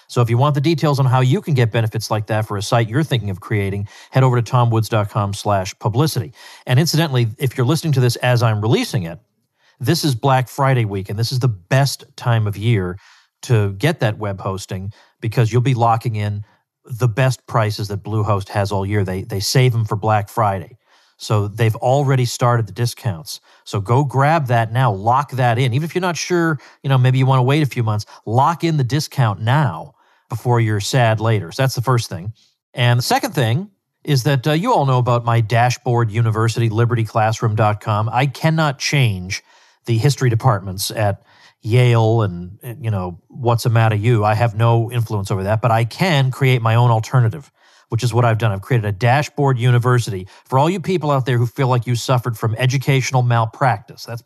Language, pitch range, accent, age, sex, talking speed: English, 110-135 Hz, American, 40-59, male, 205 wpm